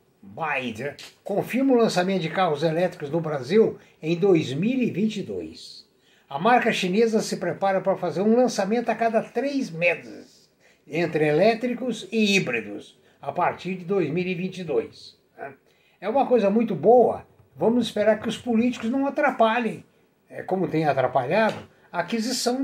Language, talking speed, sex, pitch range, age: Portuguese, 130 wpm, male, 170-225 Hz, 60-79